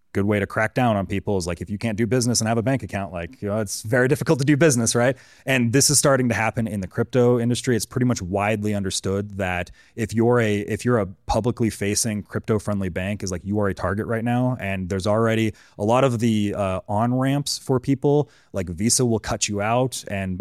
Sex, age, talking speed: male, 30-49, 245 wpm